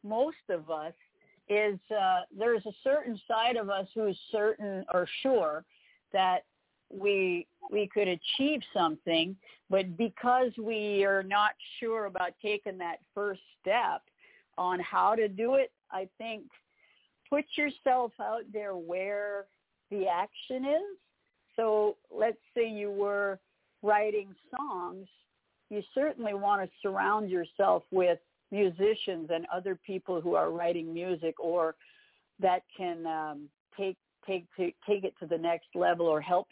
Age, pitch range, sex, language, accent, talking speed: 50-69, 175-220 Hz, female, English, American, 140 wpm